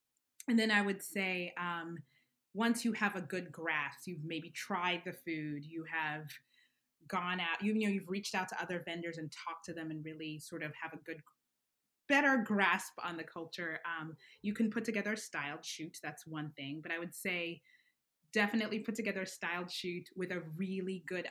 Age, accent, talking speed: 20-39, American, 200 wpm